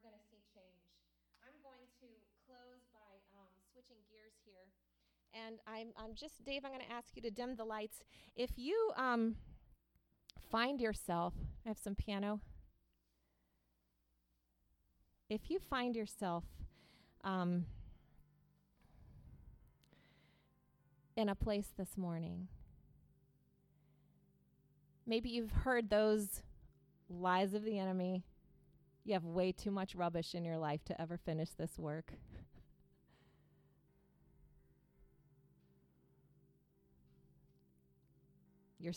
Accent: American